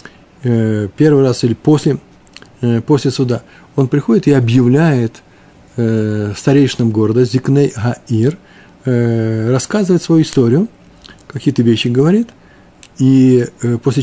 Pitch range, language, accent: 115-140 Hz, Russian, native